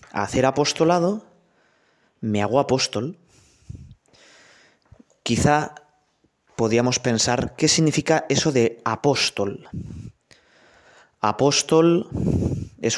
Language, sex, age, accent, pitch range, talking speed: Spanish, male, 20-39, Spanish, 110-140 Hz, 70 wpm